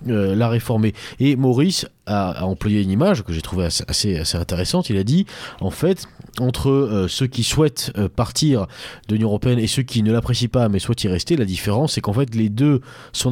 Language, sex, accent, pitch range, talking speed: French, male, French, 95-130 Hz, 220 wpm